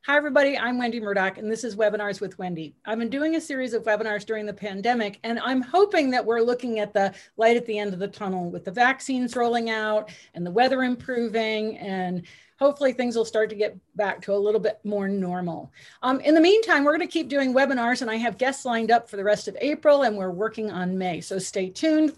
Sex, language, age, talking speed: female, English, 40-59, 235 wpm